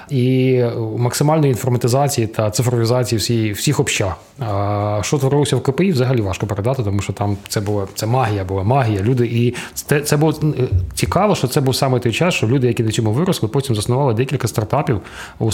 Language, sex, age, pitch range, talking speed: Ukrainian, male, 20-39, 110-135 Hz, 185 wpm